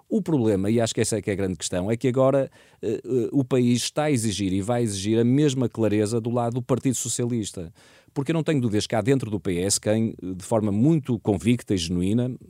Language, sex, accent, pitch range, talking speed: Portuguese, male, Portuguese, 100-130 Hz, 245 wpm